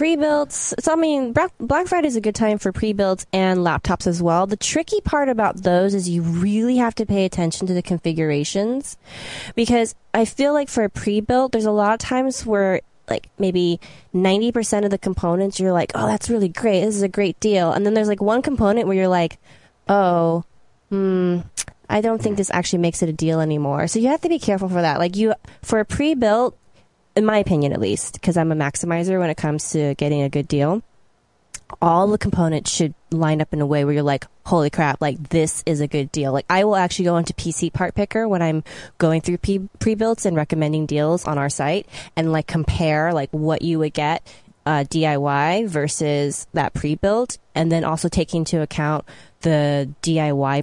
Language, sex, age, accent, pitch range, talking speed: English, female, 20-39, American, 155-210 Hz, 205 wpm